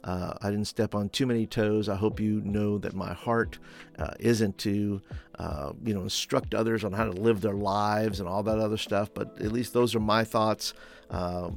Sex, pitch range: male, 100-115 Hz